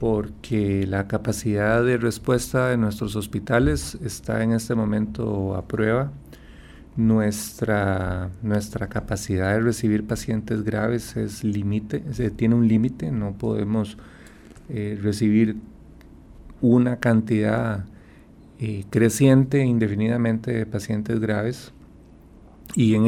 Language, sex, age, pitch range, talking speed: Spanish, male, 40-59, 100-120 Hz, 105 wpm